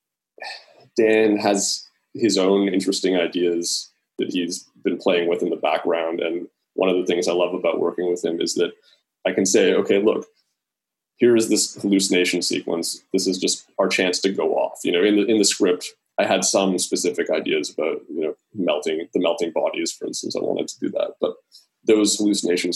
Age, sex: 20-39, male